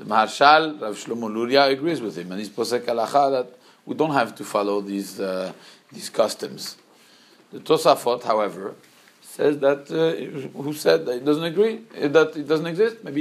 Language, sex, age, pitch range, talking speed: English, male, 50-69, 115-150 Hz, 175 wpm